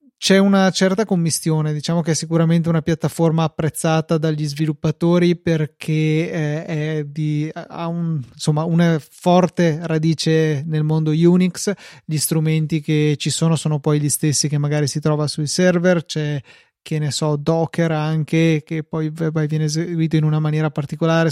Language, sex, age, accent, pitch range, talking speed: Italian, male, 30-49, native, 155-170 Hz, 155 wpm